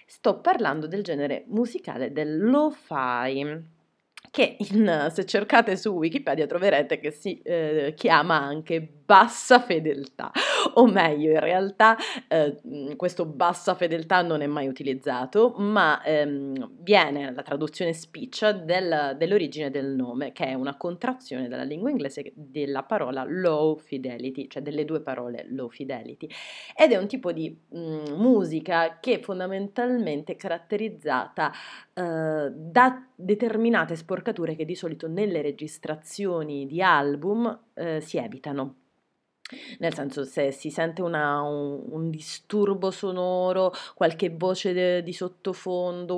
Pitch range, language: 145-190 Hz, Italian